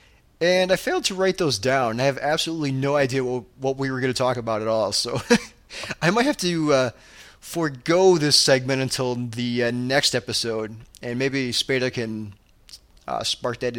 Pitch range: 120-145 Hz